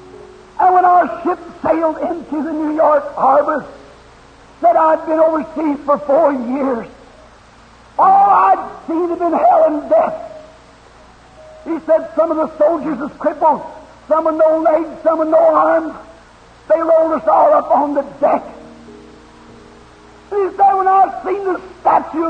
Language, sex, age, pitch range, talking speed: English, male, 50-69, 305-330 Hz, 155 wpm